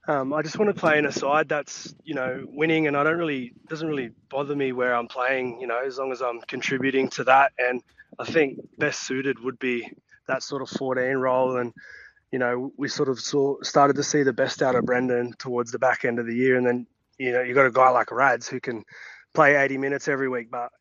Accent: Australian